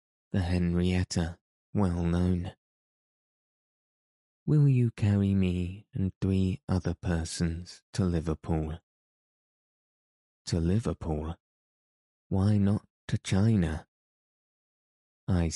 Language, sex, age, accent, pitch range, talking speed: English, male, 20-39, British, 85-100 Hz, 80 wpm